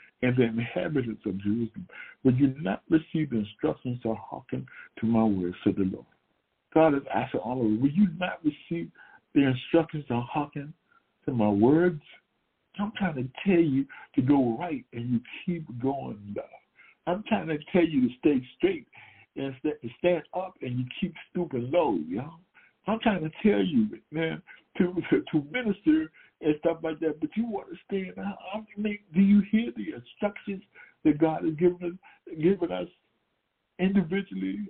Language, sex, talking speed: English, male, 175 wpm